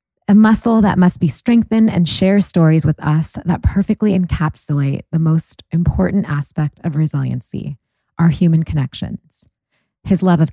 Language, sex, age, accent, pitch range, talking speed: English, female, 20-39, American, 150-185 Hz, 150 wpm